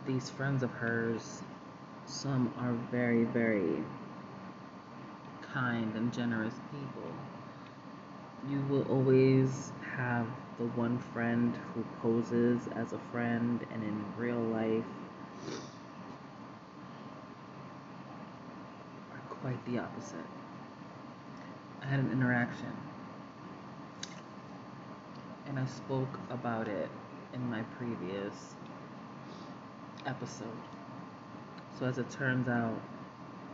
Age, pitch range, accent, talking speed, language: 30-49, 115-130 Hz, American, 90 wpm, English